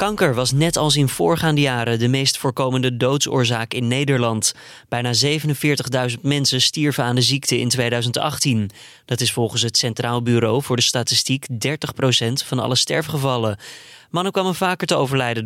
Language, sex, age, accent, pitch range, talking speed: Dutch, male, 20-39, Dutch, 120-145 Hz, 155 wpm